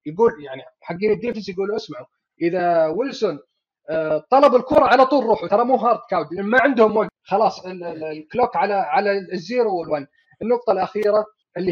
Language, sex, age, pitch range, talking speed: Arabic, male, 30-49, 175-240 Hz, 150 wpm